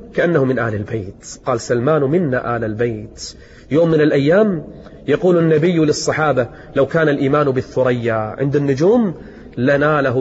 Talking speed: 130 wpm